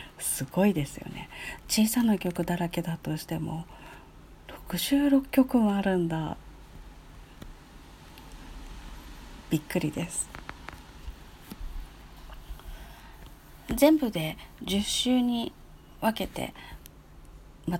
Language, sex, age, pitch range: Japanese, female, 40-59, 150-215 Hz